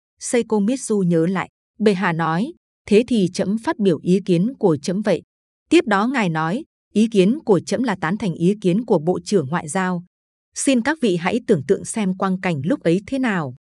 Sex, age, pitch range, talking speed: female, 20-39, 175-225 Hz, 210 wpm